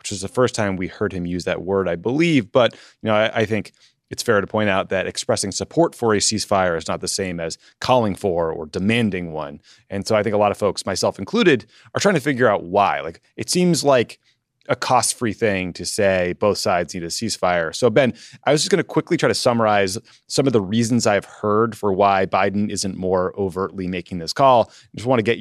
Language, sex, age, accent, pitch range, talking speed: English, male, 30-49, American, 90-110 Hz, 240 wpm